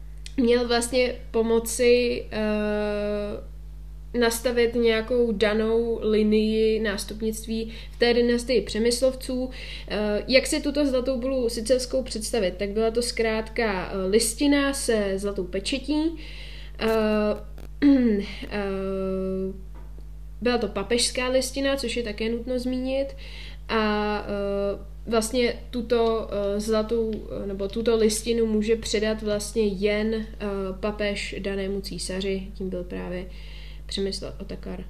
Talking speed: 105 wpm